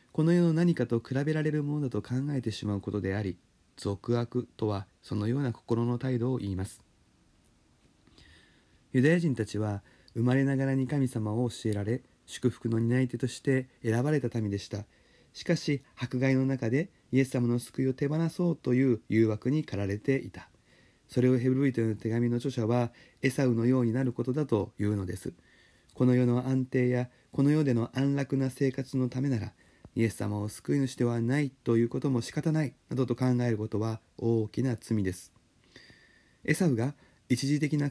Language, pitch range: Japanese, 110-135 Hz